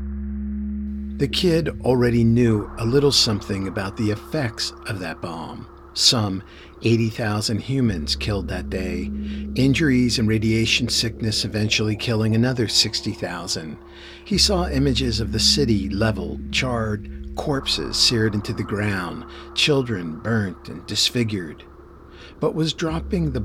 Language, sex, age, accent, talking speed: English, male, 50-69, American, 125 wpm